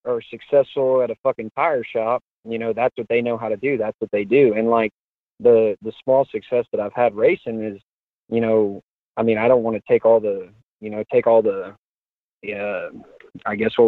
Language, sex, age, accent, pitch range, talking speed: English, male, 20-39, American, 110-130 Hz, 220 wpm